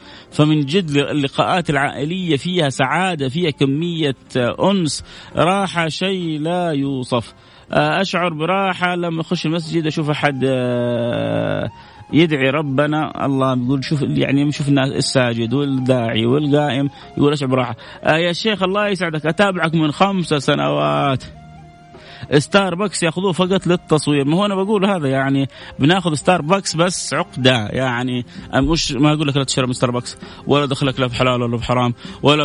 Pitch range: 135-185 Hz